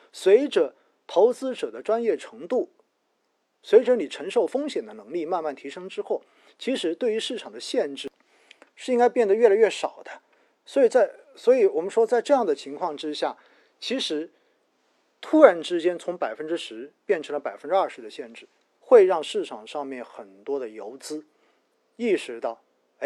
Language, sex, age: Chinese, male, 50-69